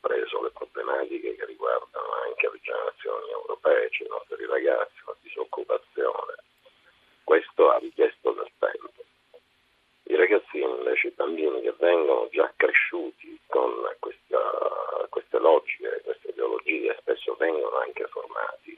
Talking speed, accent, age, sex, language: 120 wpm, native, 50-69, male, Italian